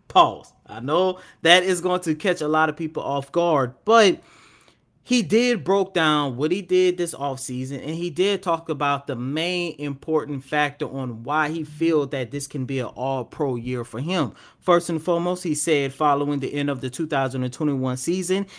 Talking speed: 195 wpm